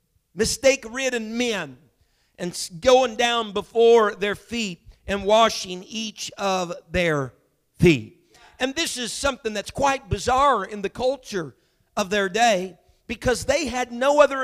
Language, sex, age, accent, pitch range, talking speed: English, male, 50-69, American, 195-255 Hz, 135 wpm